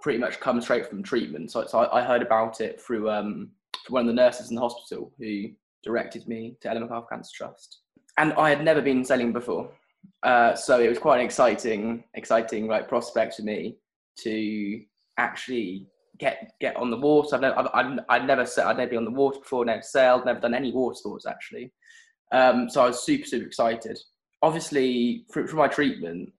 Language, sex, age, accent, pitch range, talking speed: English, male, 20-39, British, 115-130 Hz, 200 wpm